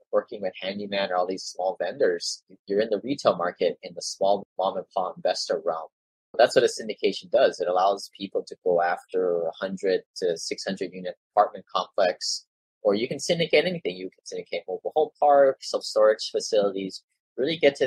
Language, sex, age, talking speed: English, male, 30-49, 190 wpm